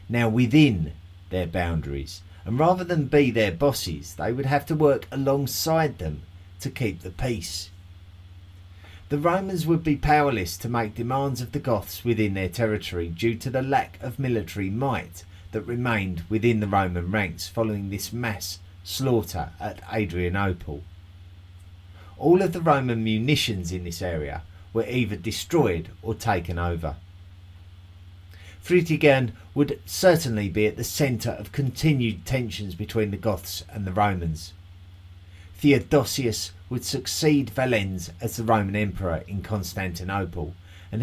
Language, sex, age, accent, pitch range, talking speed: English, male, 30-49, British, 90-125 Hz, 140 wpm